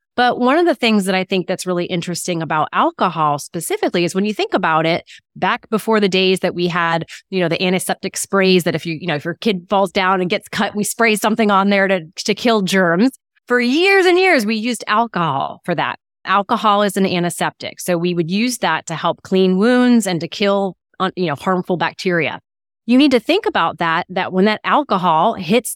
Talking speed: 220 wpm